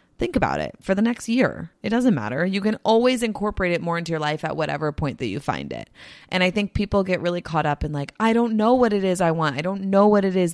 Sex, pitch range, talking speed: female, 145-195 Hz, 285 wpm